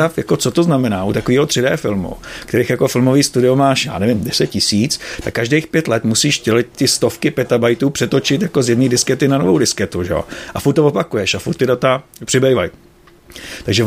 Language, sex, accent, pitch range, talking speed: Czech, male, native, 115-140 Hz, 190 wpm